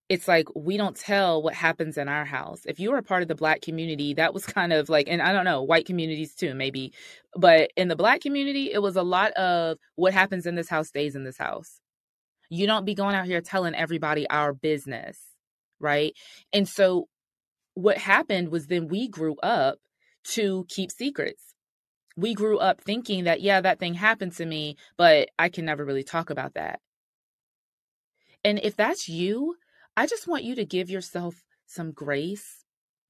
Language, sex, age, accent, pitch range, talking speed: English, female, 20-39, American, 160-210 Hz, 190 wpm